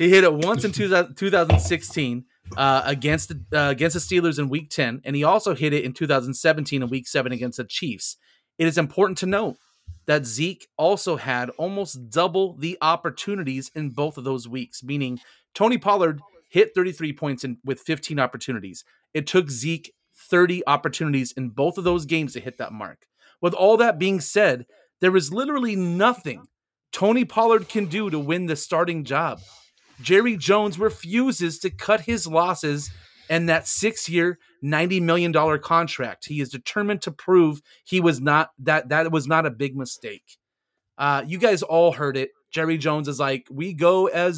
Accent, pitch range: American, 140-185 Hz